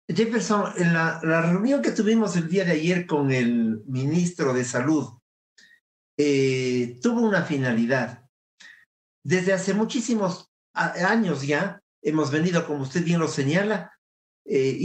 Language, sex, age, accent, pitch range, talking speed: English, male, 50-69, Mexican, 140-190 Hz, 135 wpm